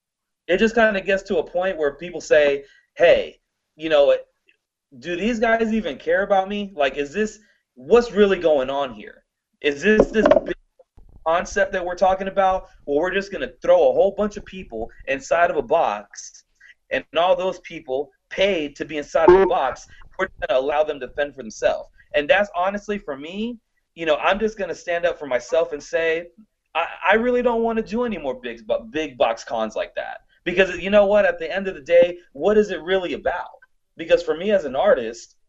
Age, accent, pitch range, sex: 30-49, American, 150-220 Hz, male